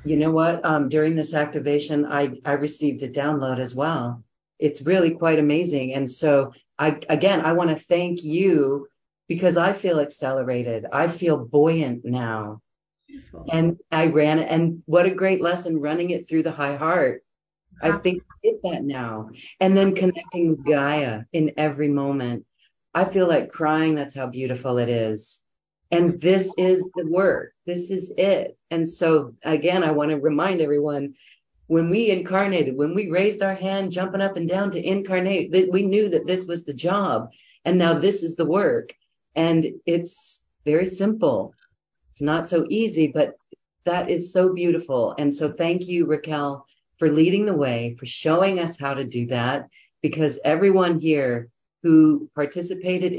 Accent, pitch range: American, 145-180 Hz